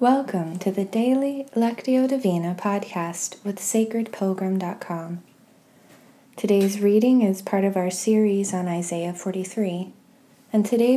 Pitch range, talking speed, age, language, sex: 180-220 Hz, 115 wpm, 20-39, English, female